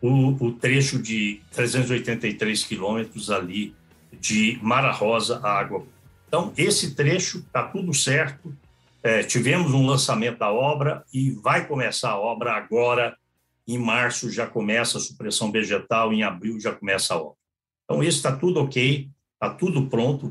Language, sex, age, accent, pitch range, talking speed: Portuguese, male, 60-79, Brazilian, 110-165 Hz, 150 wpm